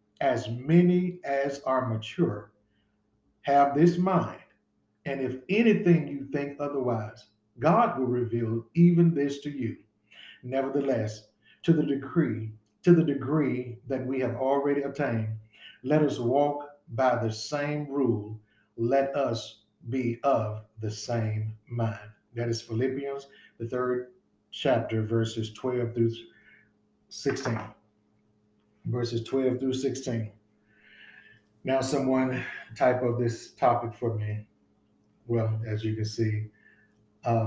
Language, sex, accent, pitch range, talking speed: English, male, American, 110-140 Hz, 120 wpm